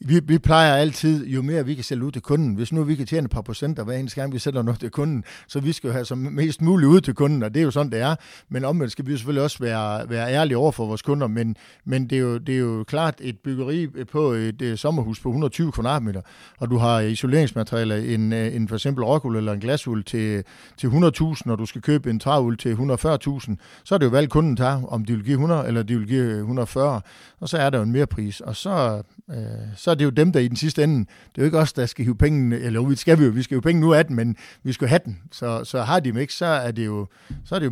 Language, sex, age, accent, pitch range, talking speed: Danish, male, 50-69, native, 115-150 Hz, 275 wpm